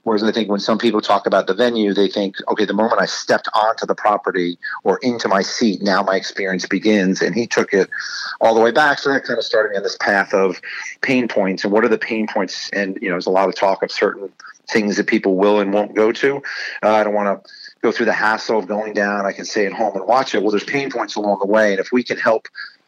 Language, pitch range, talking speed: English, 100-115 Hz, 275 wpm